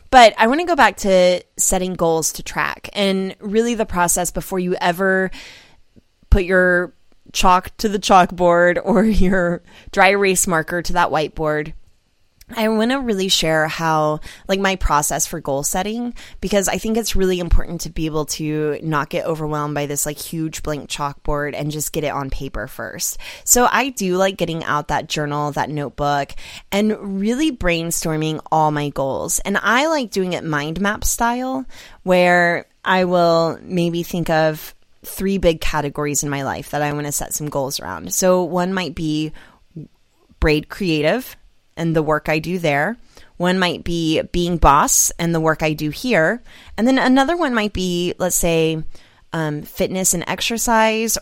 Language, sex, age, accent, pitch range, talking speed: English, female, 20-39, American, 155-195 Hz, 175 wpm